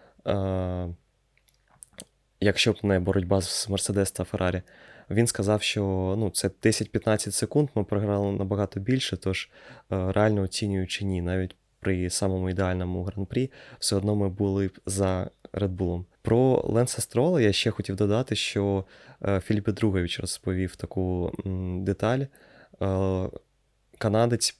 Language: Ukrainian